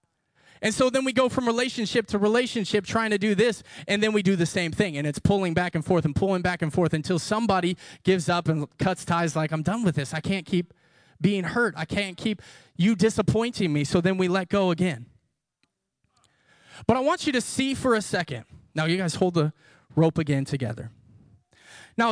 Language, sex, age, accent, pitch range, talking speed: English, male, 20-39, American, 155-230 Hz, 210 wpm